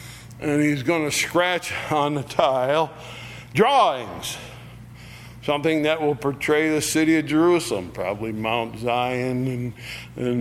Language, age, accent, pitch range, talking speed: English, 60-79, American, 120-145 Hz, 125 wpm